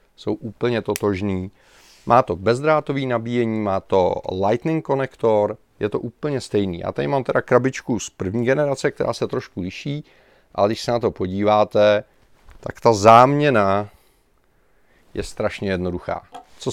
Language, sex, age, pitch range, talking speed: Czech, male, 30-49, 100-125 Hz, 145 wpm